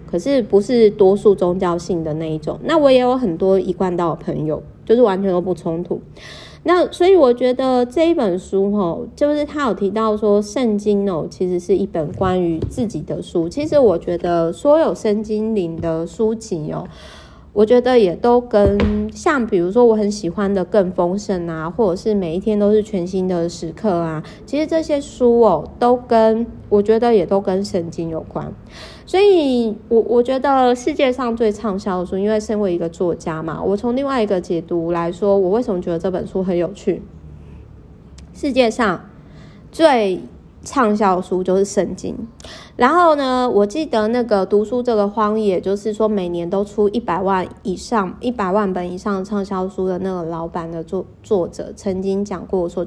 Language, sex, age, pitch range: Chinese, female, 30-49, 180-230 Hz